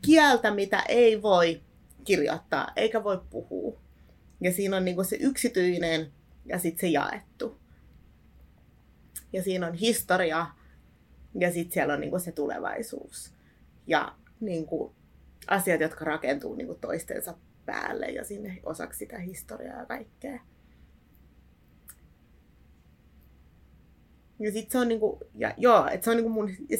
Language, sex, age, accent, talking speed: Finnish, female, 30-49, native, 100 wpm